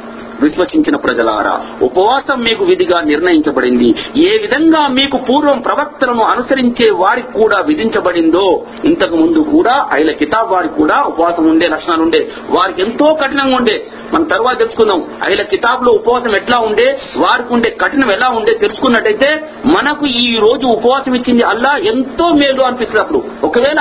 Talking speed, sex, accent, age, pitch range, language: 135 wpm, male, native, 50-69, 230-315 Hz, Telugu